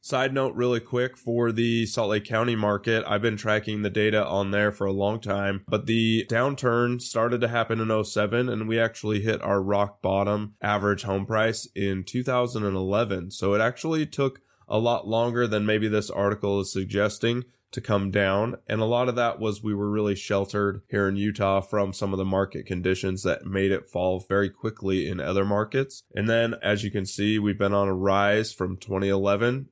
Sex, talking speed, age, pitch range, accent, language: male, 200 wpm, 20-39, 100-120 Hz, American, English